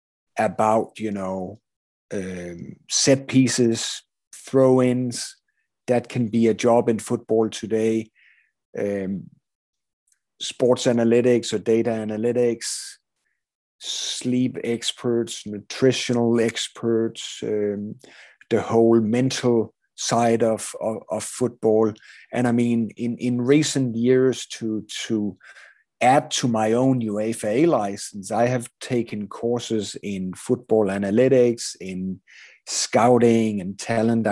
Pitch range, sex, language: 110-125 Hz, male, English